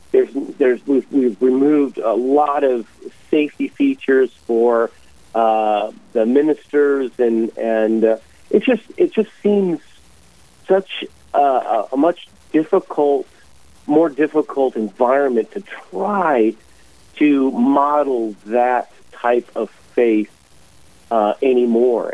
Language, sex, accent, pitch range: English, male, American, 110-150 Hz